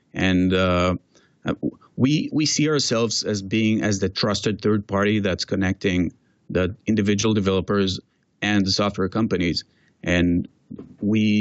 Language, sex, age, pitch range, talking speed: English, male, 30-49, 95-110 Hz, 125 wpm